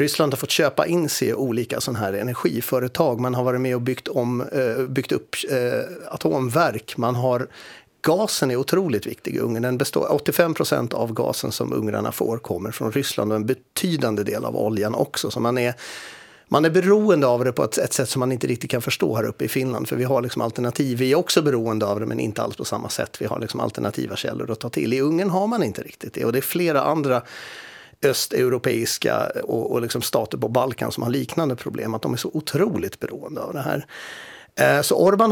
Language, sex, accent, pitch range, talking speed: Swedish, male, native, 120-150 Hz, 215 wpm